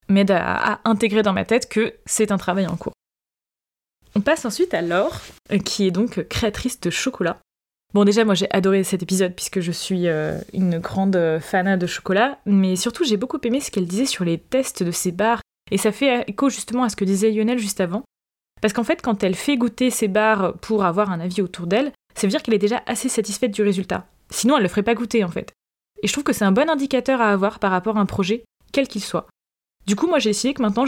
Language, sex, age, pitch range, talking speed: French, female, 20-39, 190-240 Hz, 245 wpm